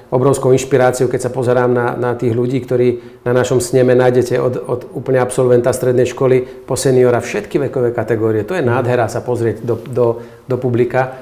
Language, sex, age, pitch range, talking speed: Slovak, male, 40-59, 115-125 Hz, 180 wpm